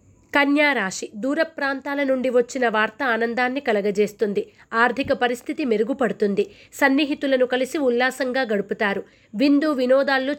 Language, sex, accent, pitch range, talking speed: Telugu, female, native, 230-285 Hz, 100 wpm